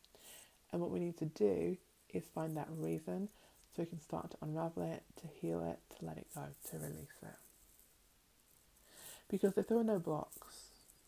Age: 30-49